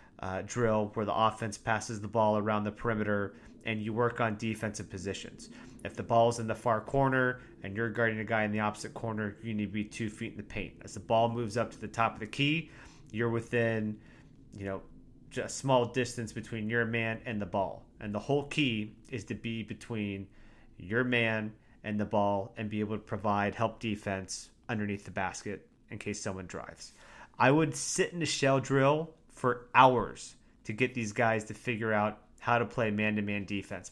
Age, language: 30-49, English